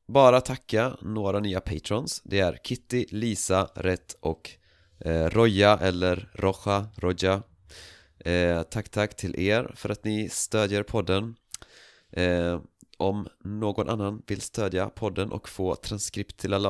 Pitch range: 85-105 Hz